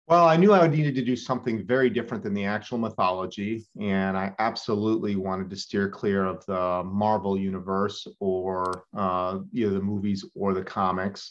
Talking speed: 170 wpm